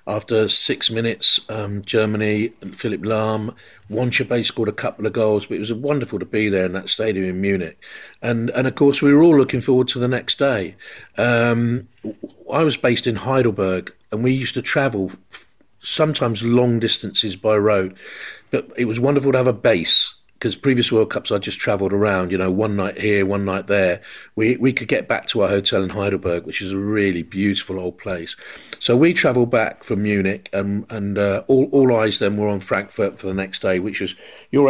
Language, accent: English, British